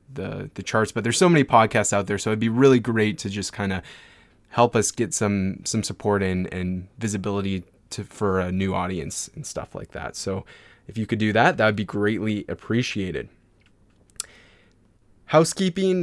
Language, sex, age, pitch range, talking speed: English, male, 20-39, 95-120 Hz, 180 wpm